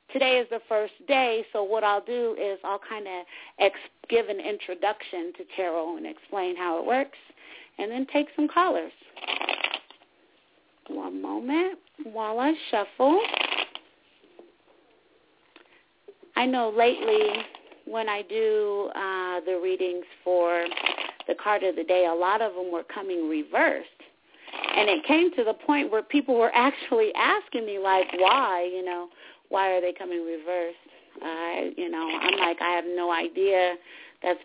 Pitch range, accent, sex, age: 185-280 Hz, American, female, 40-59